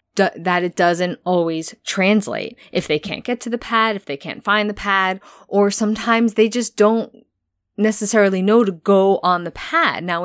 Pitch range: 175-215 Hz